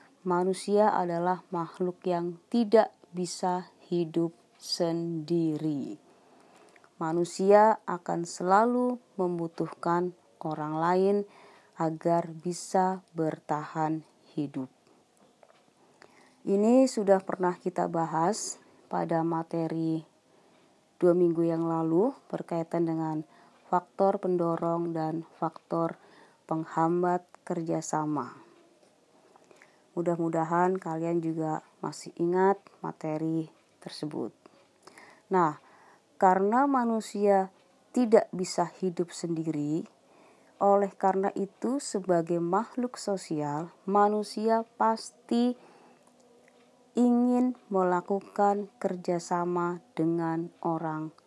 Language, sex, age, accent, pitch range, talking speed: Indonesian, female, 30-49, native, 165-200 Hz, 75 wpm